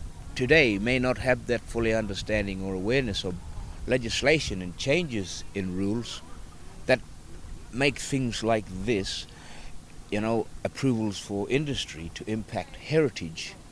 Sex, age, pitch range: male, 60-79, 85-130 Hz